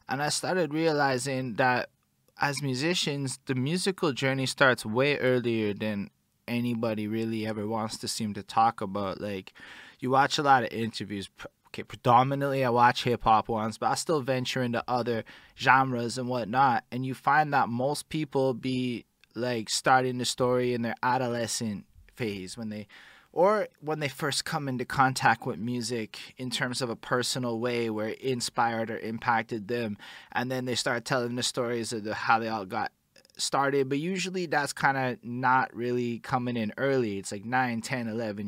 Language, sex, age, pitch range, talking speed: English, male, 20-39, 115-135 Hz, 170 wpm